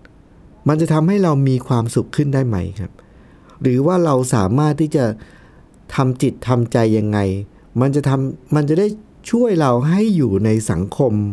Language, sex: Thai, male